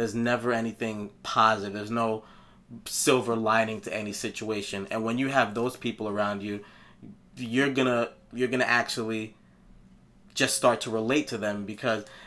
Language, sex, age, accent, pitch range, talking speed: English, male, 20-39, American, 105-120 Hz, 160 wpm